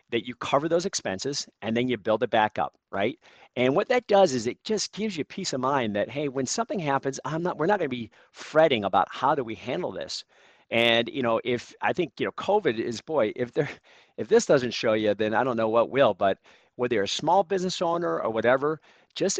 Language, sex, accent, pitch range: English, male, American, 110-150 Hz